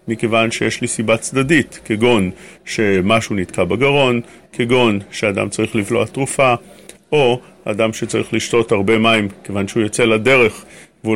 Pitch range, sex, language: 110-130 Hz, male, English